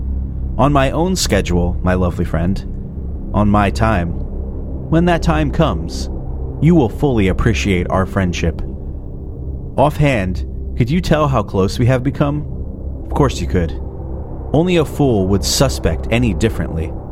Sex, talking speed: male, 140 wpm